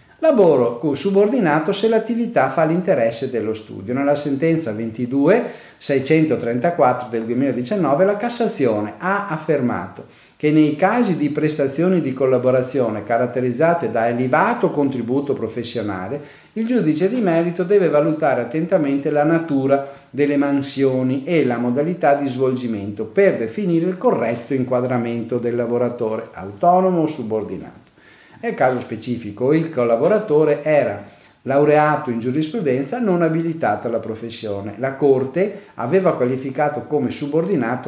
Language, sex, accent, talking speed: Italian, male, native, 115 wpm